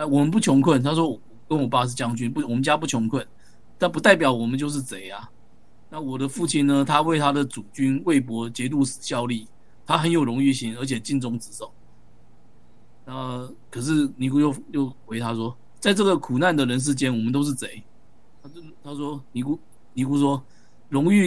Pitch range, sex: 120-150 Hz, male